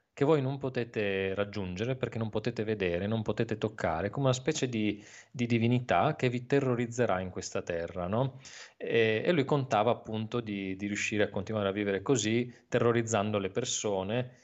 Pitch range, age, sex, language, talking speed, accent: 105-130 Hz, 20-39, male, Italian, 170 wpm, native